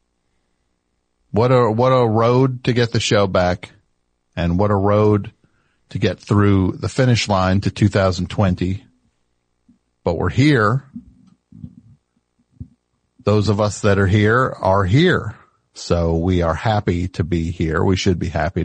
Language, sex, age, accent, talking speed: English, male, 50-69, American, 140 wpm